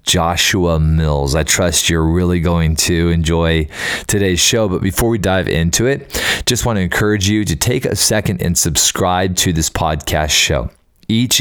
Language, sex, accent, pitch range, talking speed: English, male, American, 85-105 Hz, 175 wpm